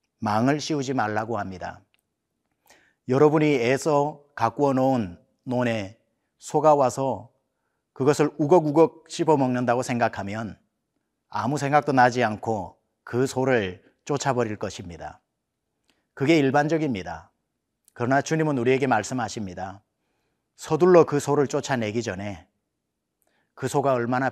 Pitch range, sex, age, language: 110-140 Hz, male, 40-59, Korean